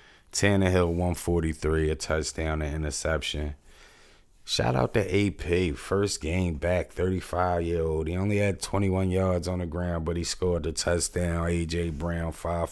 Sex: male